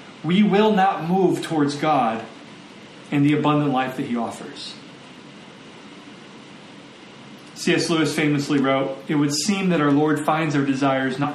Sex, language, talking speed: male, English, 145 wpm